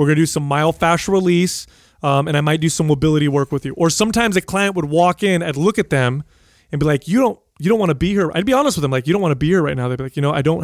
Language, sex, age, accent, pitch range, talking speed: English, male, 30-49, American, 140-175 Hz, 340 wpm